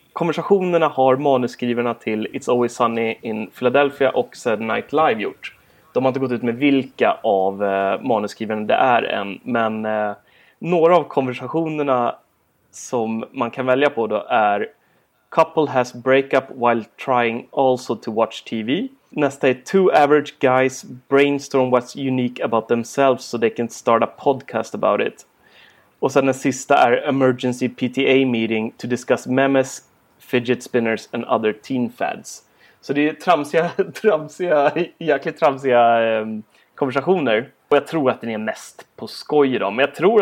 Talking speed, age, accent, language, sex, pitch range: 155 wpm, 30-49, native, Swedish, male, 120-150 Hz